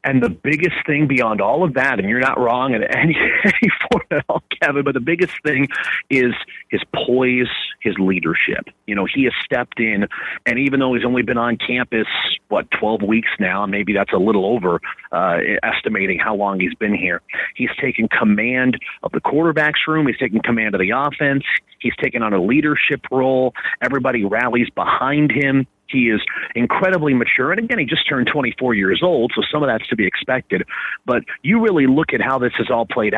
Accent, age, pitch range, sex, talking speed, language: American, 40-59, 115-135 Hz, male, 195 wpm, English